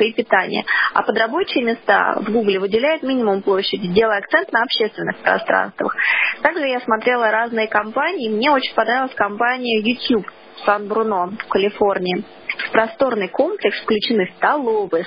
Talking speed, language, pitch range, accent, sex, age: 140 wpm, Russian, 205-250 Hz, native, female, 20-39